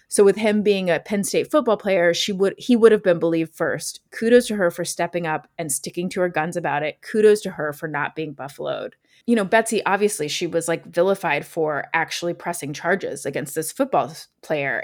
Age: 20-39